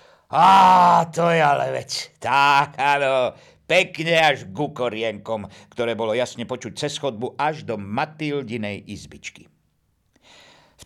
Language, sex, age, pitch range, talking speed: Slovak, male, 50-69, 115-170 Hz, 120 wpm